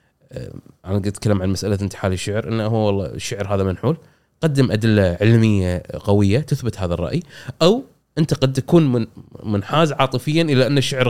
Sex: male